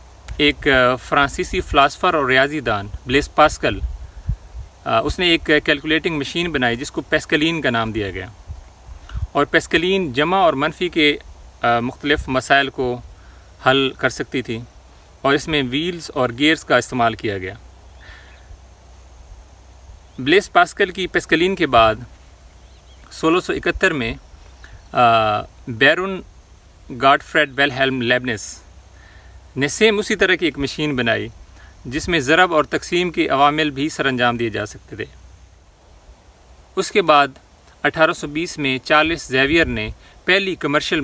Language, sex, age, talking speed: Urdu, male, 40-59, 135 wpm